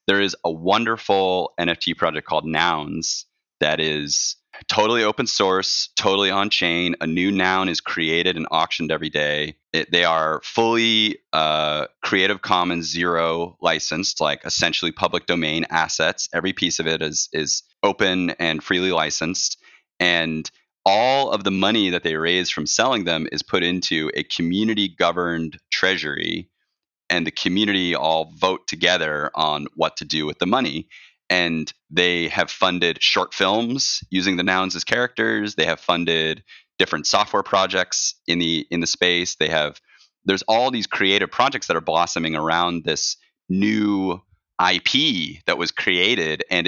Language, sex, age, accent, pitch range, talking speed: English, male, 30-49, American, 80-95 Hz, 150 wpm